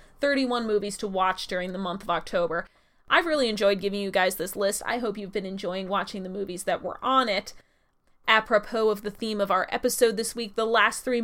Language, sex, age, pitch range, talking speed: English, female, 20-39, 195-240 Hz, 220 wpm